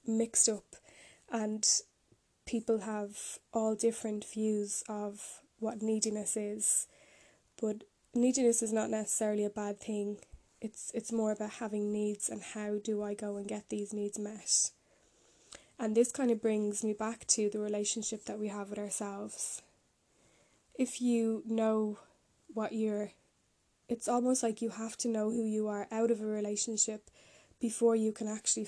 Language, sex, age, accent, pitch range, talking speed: English, female, 10-29, Irish, 210-225 Hz, 155 wpm